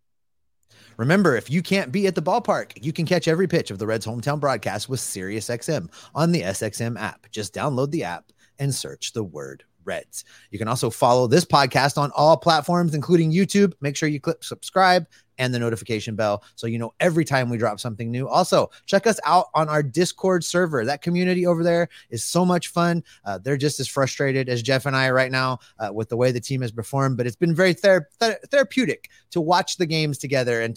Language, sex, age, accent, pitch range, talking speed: English, male, 30-49, American, 120-160 Hz, 210 wpm